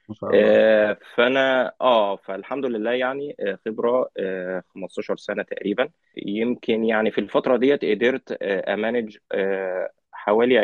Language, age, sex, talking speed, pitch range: Arabic, 20-39, male, 115 wpm, 105-150 Hz